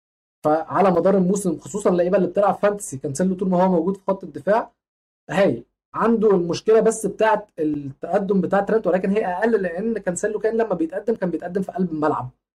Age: 20-39